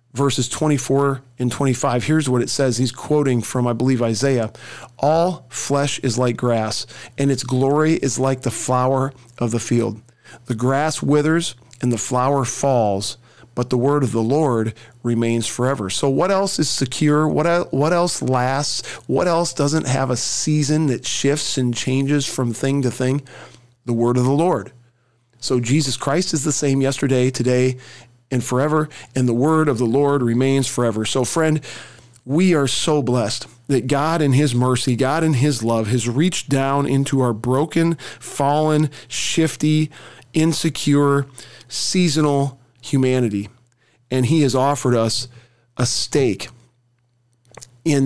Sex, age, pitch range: male, 40-59, 120-145 Hz